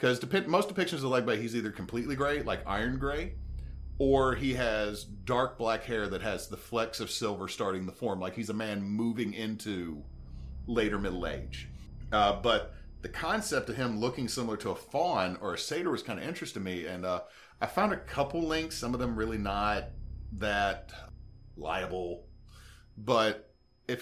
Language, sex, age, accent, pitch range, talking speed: English, male, 40-59, American, 90-120 Hz, 180 wpm